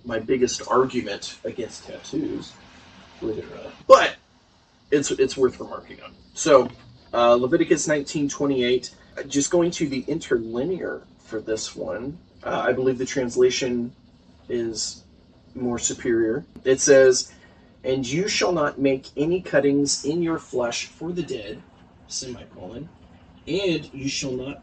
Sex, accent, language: male, American, English